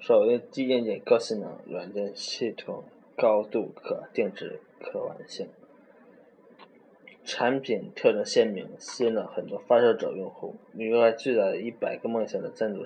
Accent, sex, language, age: native, male, Chinese, 20-39